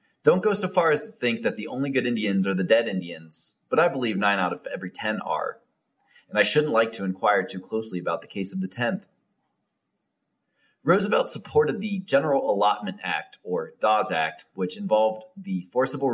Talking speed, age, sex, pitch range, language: 195 wpm, 20-39, male, 95-140 Hz, English